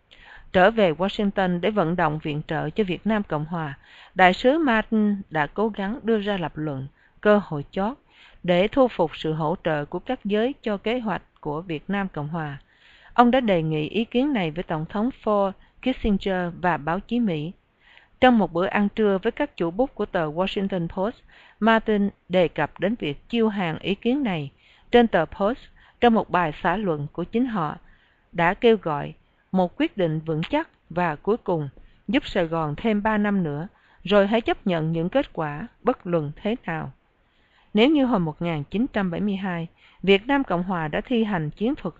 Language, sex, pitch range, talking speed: English, female, 165-220 Hz, 195 wpm